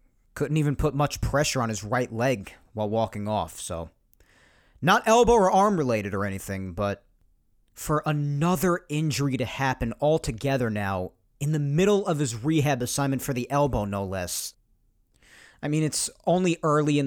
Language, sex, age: English, male, 40-59